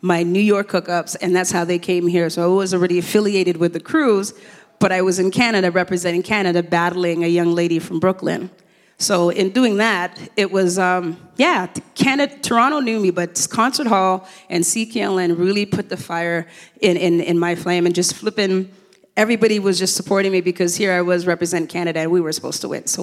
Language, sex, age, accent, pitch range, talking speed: English, female, 30-49, American, 175-205 Hz, 205 wpm